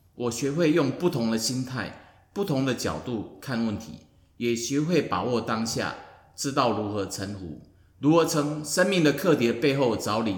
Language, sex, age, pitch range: Chinese, male, 30-49, 105-150 Hz